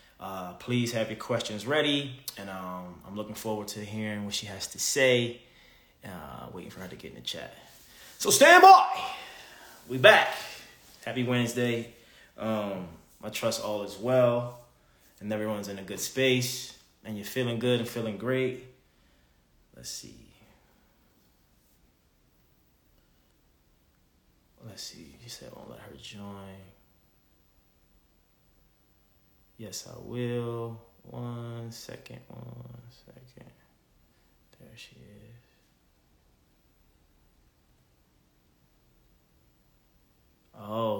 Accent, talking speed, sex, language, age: American, 110 wpm, male, English, 20-39